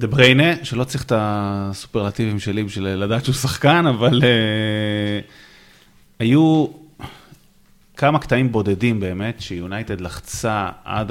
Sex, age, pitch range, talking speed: male, 30-49, 100-145 Hz, 115 wpm